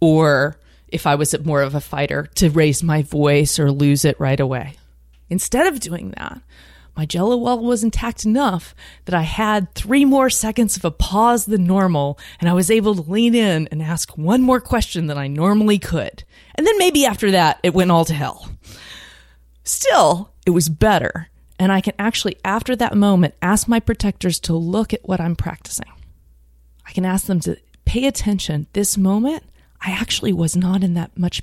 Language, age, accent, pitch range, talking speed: English, 30-49, American, 145-195 Hz, 190 wpm